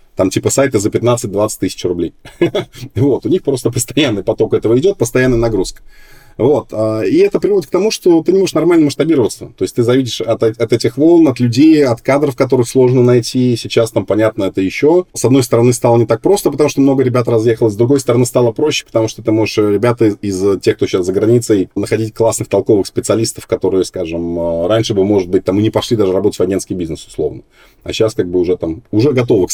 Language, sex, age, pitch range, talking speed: Russian, male, 20-39, 105-135 Hz, 215 wpm